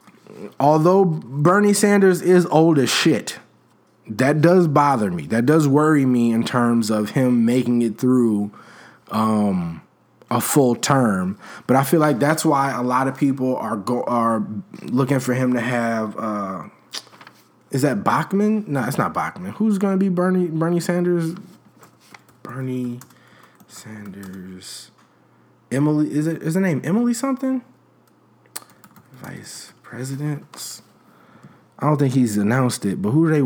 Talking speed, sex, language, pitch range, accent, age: 145 wpm, male, English, 110-165 Hz, American, 20-39